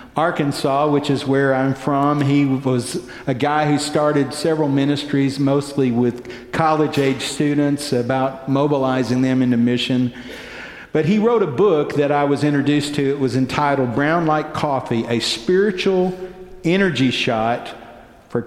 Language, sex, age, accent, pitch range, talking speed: English, male, 50-69, American, 120-165 Hz, 145 wpm